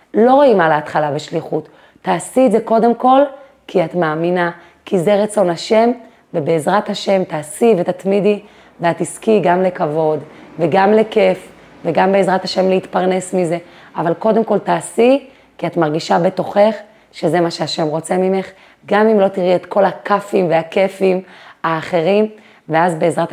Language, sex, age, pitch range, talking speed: Hebrew, female, 30-49, 170-210 Hz, 145 wpm